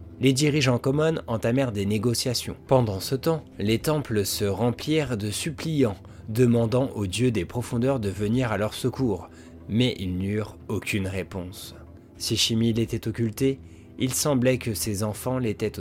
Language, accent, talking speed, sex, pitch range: French, French, 150 wpm, male, 95-125 Hz